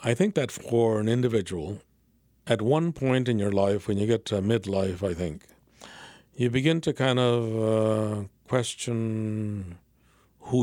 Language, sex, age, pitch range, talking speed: English, male, 50-69, 110-135 Hz, 150 wpm